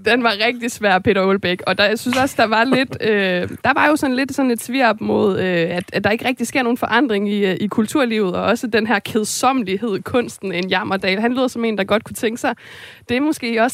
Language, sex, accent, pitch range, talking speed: Danish, female, native, 200-240 Hz, 260 wpm